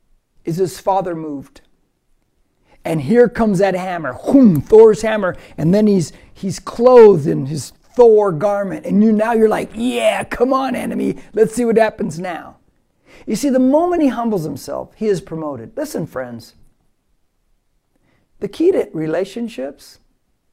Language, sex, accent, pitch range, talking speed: English, male, American, 170-245 Hz, 145 wpm